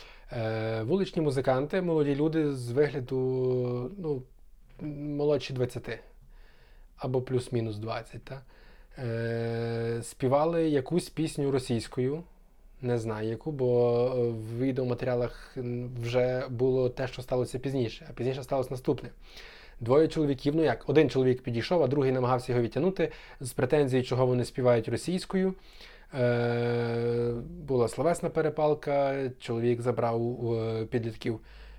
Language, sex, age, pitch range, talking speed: Ukrainian, male, 20-39, 120-145 Hz, 105 wpm